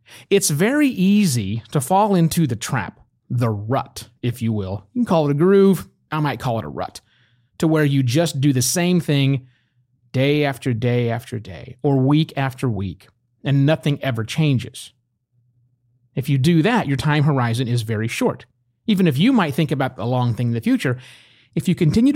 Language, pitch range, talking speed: English, 120-155 Hz, 190 wpm